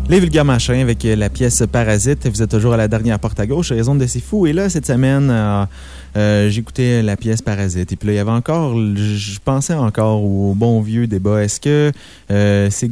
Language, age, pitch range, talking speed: French, 20-39, 100-120 Hz, 225 wpm